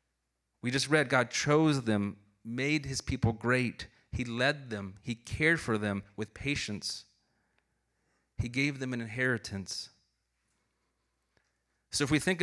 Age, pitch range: 30-49, 95-125 Hz